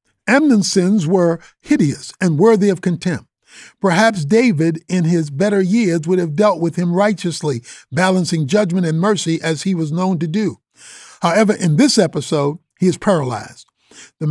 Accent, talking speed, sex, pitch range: American, 160 wpm, male, 155-200 Hz